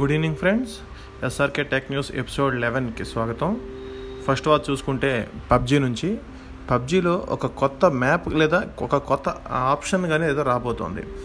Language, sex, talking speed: Telugu, male, 135 wpm